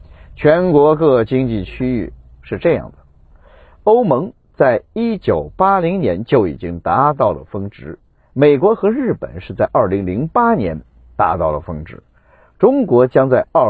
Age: 50-69